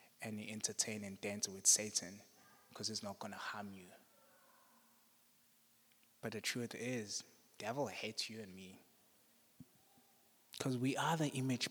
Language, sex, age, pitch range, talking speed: English, male, 20-39, 115-155 Hz, 135 wpm